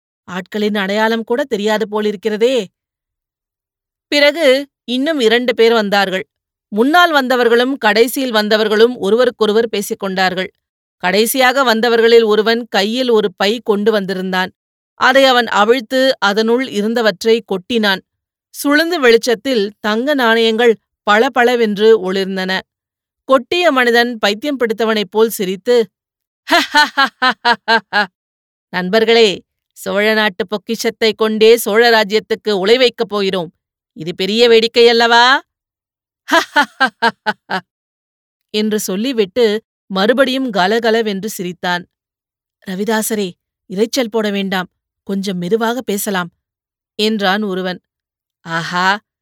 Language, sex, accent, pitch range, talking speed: Tamil, female, native, 200-235 Hz, 85 wpm